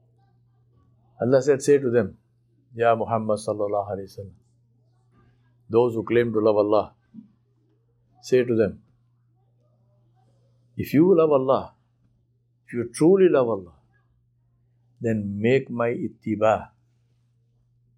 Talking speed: 100 wpm